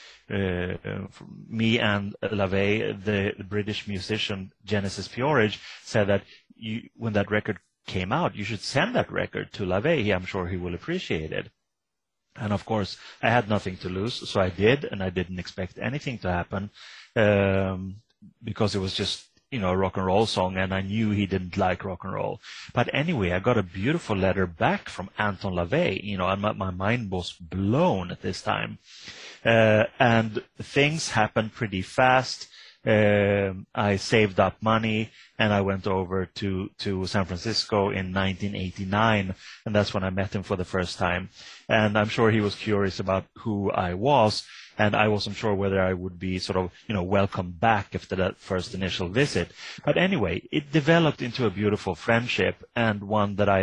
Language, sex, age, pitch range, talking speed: English, male, 30-49, 95-110 Hz, 180 wpm